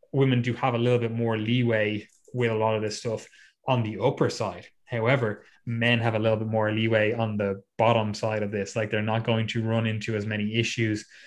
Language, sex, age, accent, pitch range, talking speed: English, male, 20-39, Irish, 110-125 Hz, 225 wpm